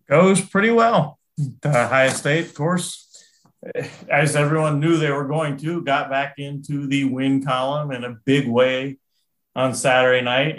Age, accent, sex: 40-59, American, male